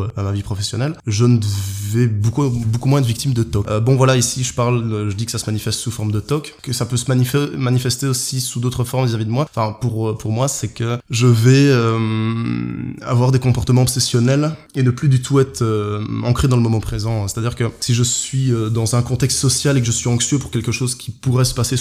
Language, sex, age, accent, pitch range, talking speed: French, male, 20-39, French, 110-130 Hz, 250 wpm